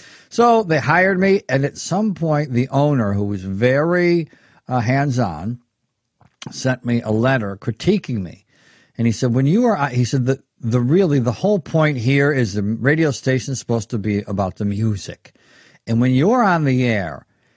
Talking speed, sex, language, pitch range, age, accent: 185 wpm, male, English, 125-180 Hz, 60-79, American